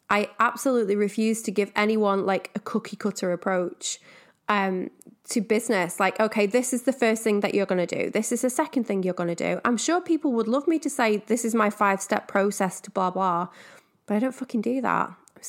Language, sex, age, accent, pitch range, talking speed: English, female, 20-39, British, 195-245 Hz, 230 wpm